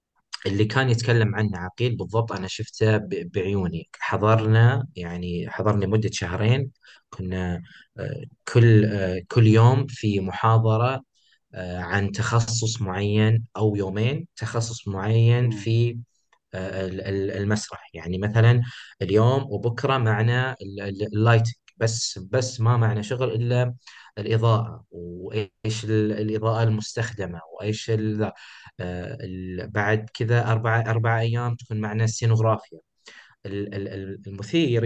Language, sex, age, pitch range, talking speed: Arabic, male, 30-49, 100-120 Hz, 100 wpm